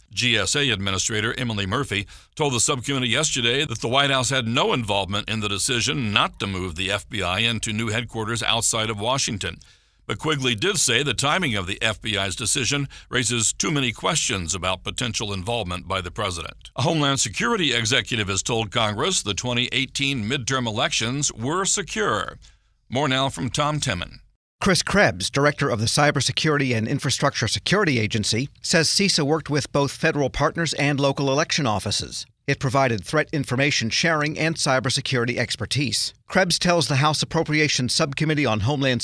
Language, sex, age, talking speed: English, male, 60-79, 160 wpm